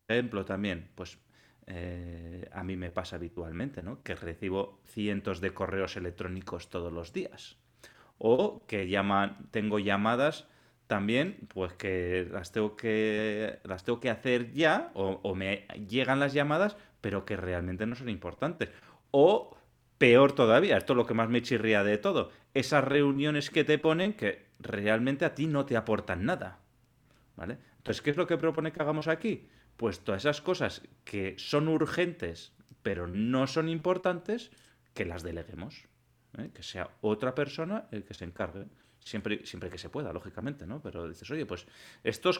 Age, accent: 30-49, Spanish